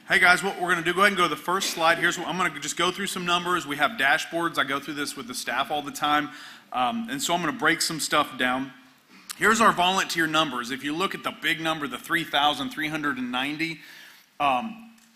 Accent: American